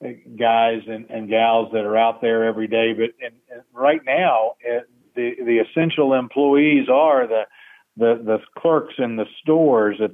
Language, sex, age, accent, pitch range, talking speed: English, male, 50-69, American, 110-130 Hz, 170 wpm